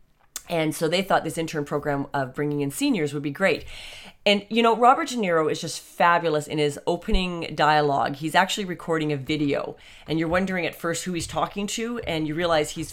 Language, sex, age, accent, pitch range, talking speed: English, female, 30-49, American, 150-205 Hz, 210 wpm